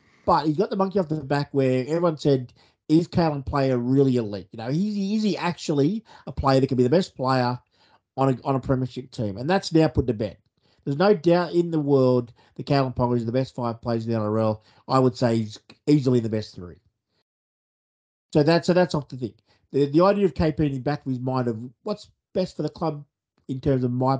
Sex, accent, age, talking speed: male, Australian, 50-69, 235 wpm